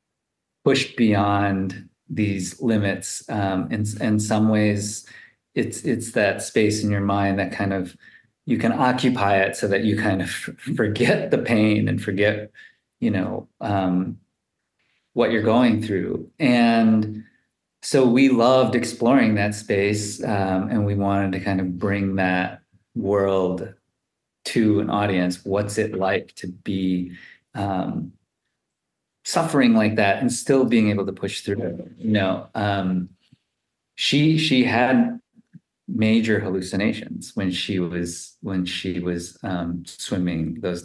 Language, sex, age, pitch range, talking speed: English, male, 30-49, 95-110 Hz, 135 wpm